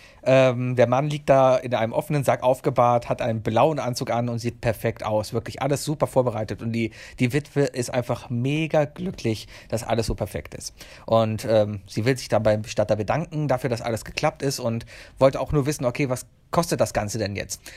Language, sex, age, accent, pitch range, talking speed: German, male, 40-59, German, 115-150 Hz, 210 wpm